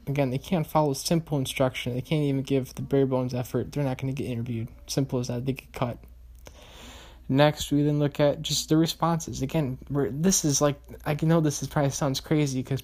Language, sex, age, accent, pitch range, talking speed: English, male, 10-29, American, 125-150 Hz, 220 wpm